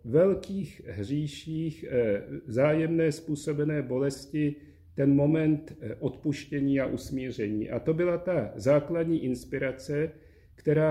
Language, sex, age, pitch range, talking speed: Czech, male, 50-69, 130-165 Hz, 95 wpm